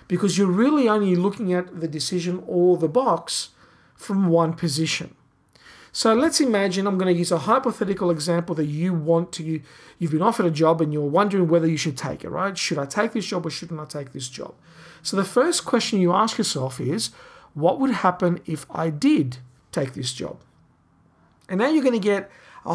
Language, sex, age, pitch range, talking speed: English, male, 50-69, 165-205 Hz, 205 wpm